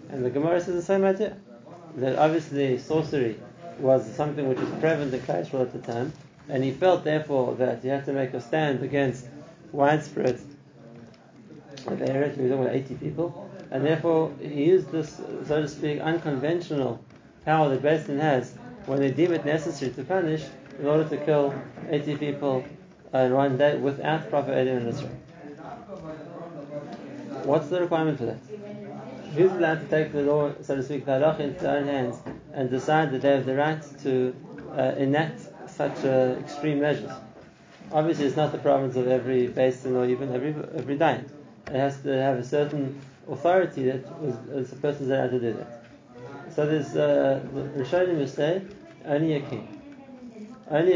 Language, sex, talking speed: English, male, 165 wpm